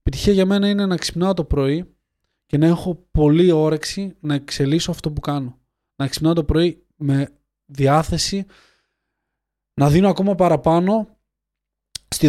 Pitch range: 140-165 Hz